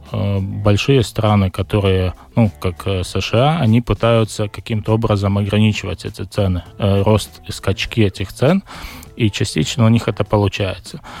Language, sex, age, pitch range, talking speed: Russian, male, 20-39, 100-115 Hz, 135 wpm